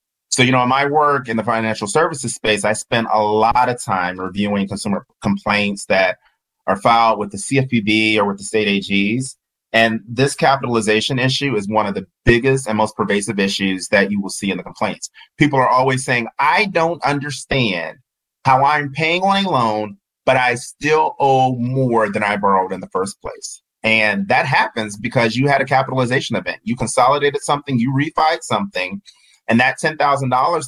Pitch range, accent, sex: 110-140 Hz, American, male